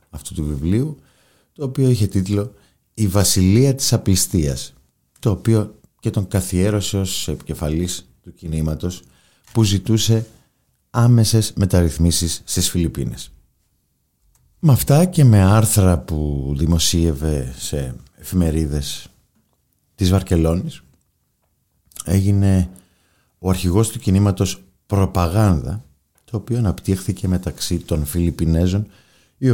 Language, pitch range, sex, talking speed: Greek, 80-110 Hz, male, 100 wpm